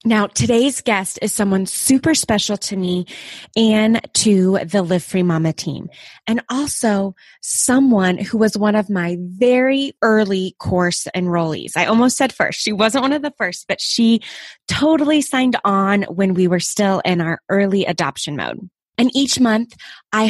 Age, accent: 20-39, American